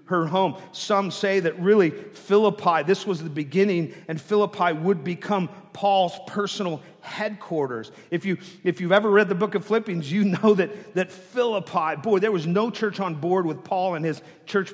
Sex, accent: male, American